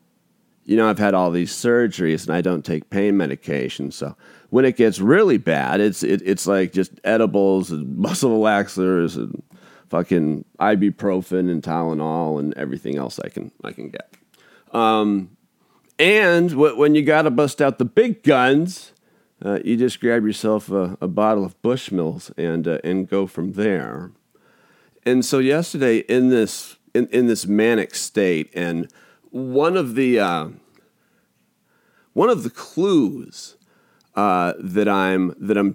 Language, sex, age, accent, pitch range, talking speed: English, male, 40-59, American, 95-140 Hz, 155 wpm